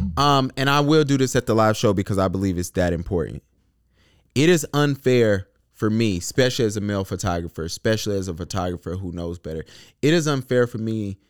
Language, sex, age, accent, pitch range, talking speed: English, male, 20-39, American, 90-115 Hz, 200 wpm